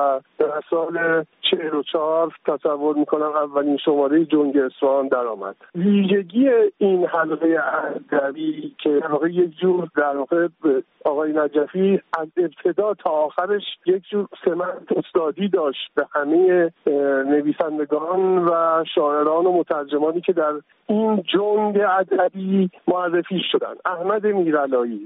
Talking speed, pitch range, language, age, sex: 110 wpm, 155-200 Hz, Persian, 50-69, male